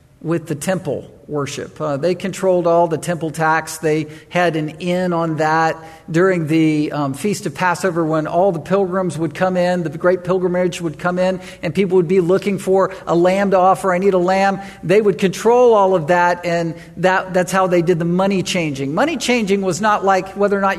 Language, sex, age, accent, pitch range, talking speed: English, male, 50-69, American, 170-210 Hz, 210 wpm